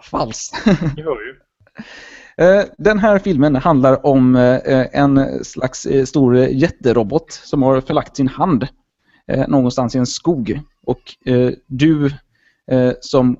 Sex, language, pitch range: male, Swedish, 120-155 Hz